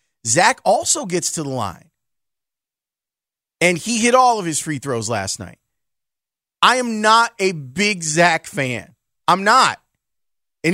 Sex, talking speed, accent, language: male, 145 wpm, American, English